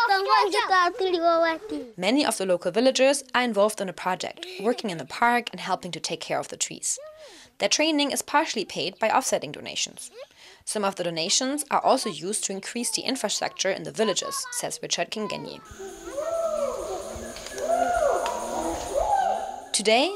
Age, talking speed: 20-39, 145 wpm